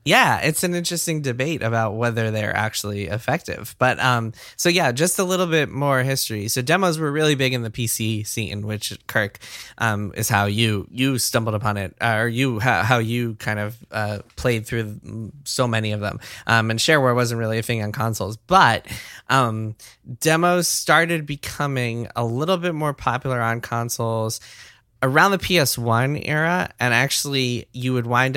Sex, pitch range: male, 110-135 Hz